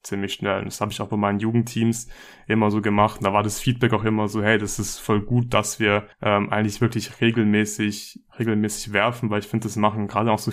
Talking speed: 230 wpm